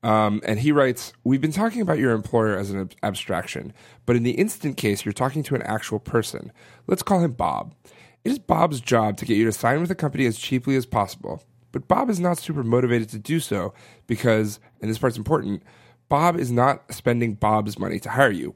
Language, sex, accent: English, male, American